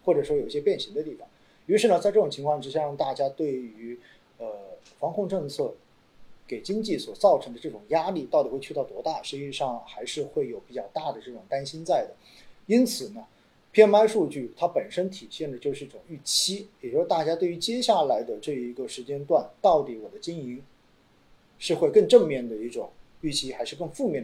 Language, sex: Chinese, male